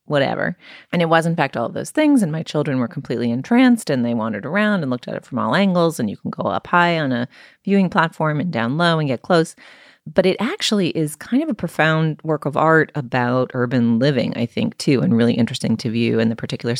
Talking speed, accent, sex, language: 245 wpm, American, female, English